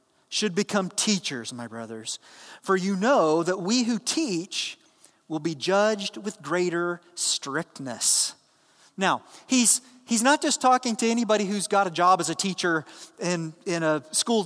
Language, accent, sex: English, American, male